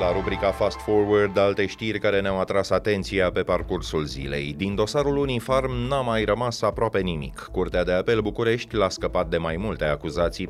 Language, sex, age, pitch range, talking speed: Romanian, male, 30-49, 80-105 Hz, 175 wpm